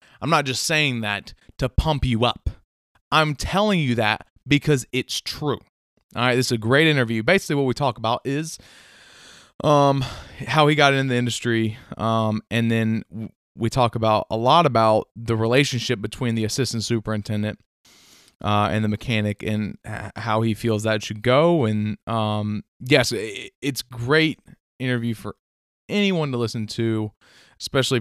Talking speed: 165 wpm